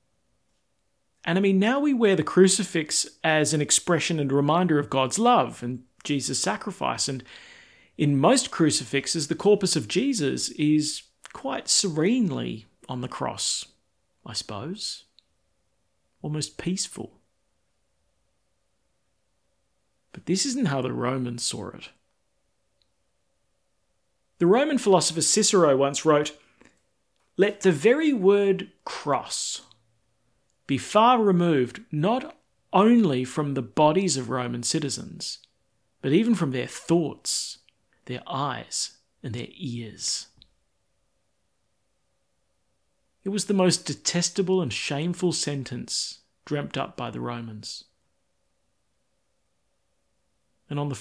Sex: male